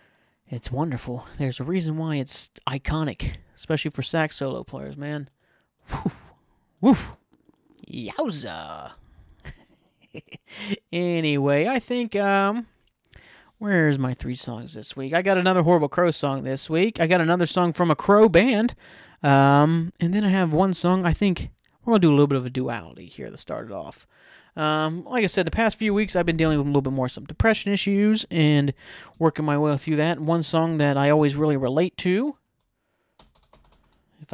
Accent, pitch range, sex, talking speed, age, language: American, 135-180 Hz, male, 175 wpm, 30-49, English